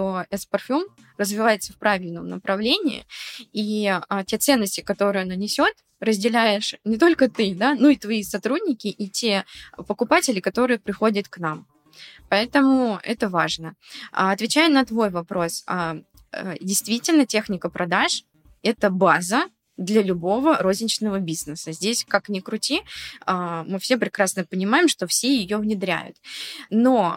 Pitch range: 195-255 Hz